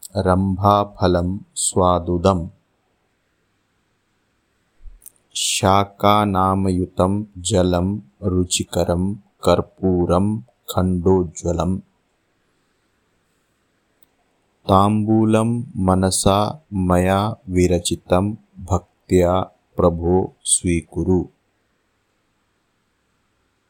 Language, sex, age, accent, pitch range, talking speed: Hindi, male, 50-69, native, 90-105 Hz, 35 wpm